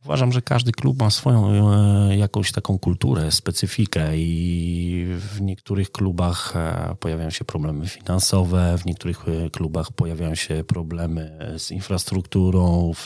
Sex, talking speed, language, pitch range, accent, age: male, 125 wpm, Polish, 90-105 Hz, native, 30-49